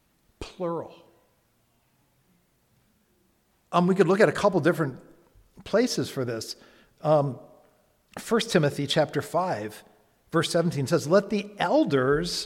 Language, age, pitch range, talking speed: English, 50-69, 145-205 Hz, 110 wpm